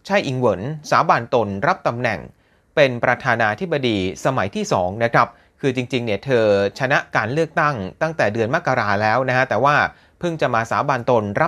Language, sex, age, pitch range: Thai, male, 30-49, 115-160 Hz